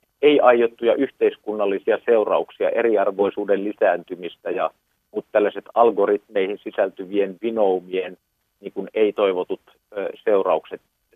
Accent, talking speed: native, 70 wpm